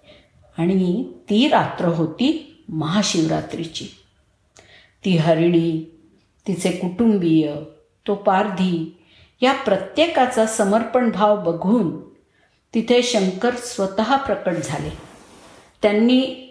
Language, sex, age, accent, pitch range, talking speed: Marathi, female, 50-69, native, 165-215 Hz, 80 wpm